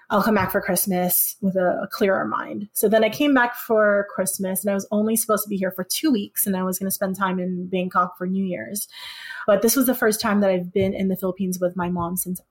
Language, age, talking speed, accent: English, 20-39, 265 wpm, American